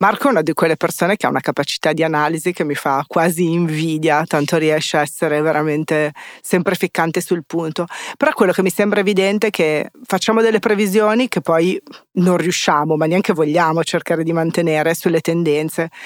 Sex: female